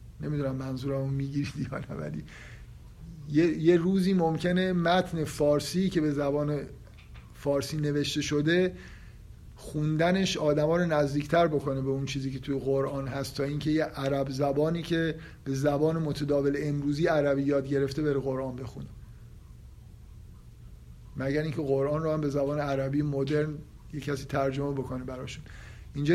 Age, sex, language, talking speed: 50-69, male, Persian, 140 wpm